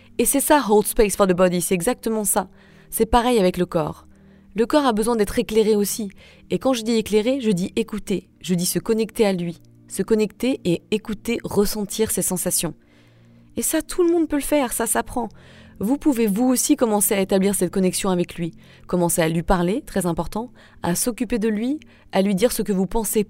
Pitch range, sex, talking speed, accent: 185-235 Hz, female, 210 wpm, French